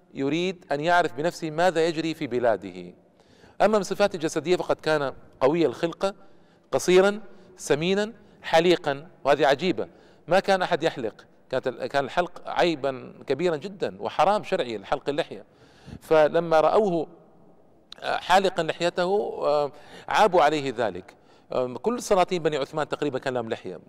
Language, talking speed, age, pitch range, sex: Arabic, 120 wpm, 50-69, 145-190 Hz, male